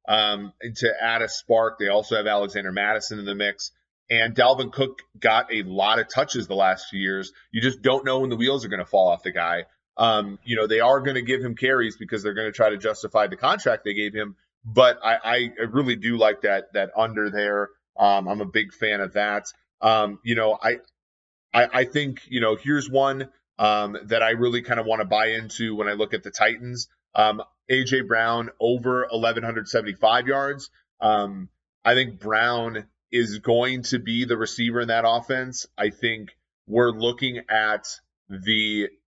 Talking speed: 200 wpm